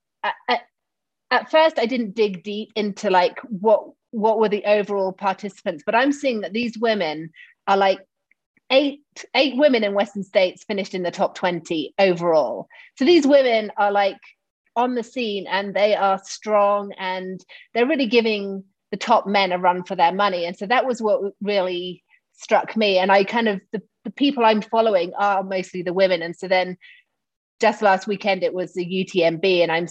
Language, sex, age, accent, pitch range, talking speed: English, female, 30-49, British, 185-225 Hz, 185 wpm